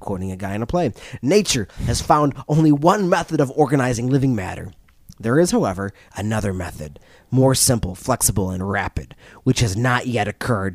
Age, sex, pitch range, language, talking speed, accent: 30-49, male, 95-140 Hz, English, 175 wpm, American